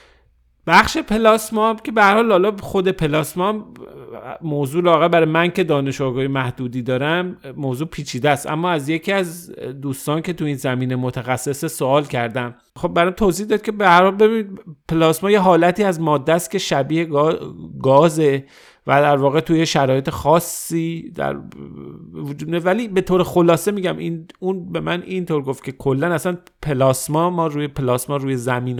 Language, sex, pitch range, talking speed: Persian, male, 125-170 Hz, 150 wpm